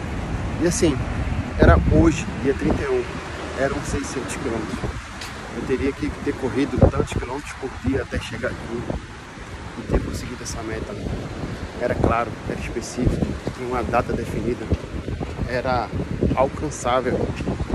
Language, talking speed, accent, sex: Portuguese, 120 wpm, Brazilian, male